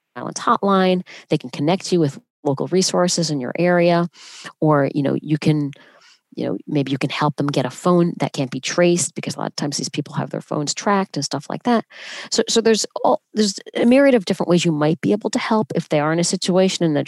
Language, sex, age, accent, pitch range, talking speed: English, female, 40-59, American, 150-195 Hz, 245 wpm